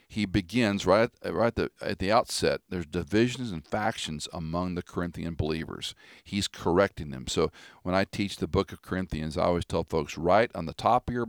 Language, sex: English, male